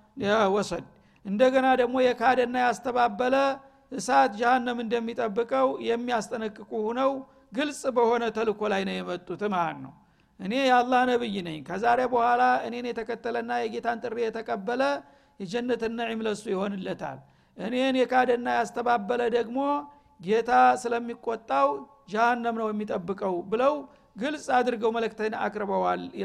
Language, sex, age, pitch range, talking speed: Amharic, male, 50-69, 215-255 Hz, 105 wpm